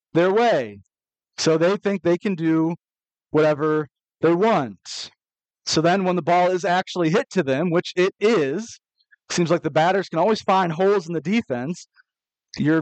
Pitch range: 155-195 Hz